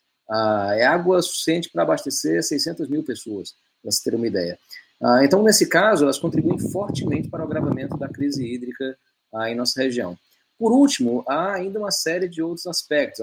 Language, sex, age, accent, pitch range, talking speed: English, male, 30-49, Brazilian, 115-155 Hz, 180 wpm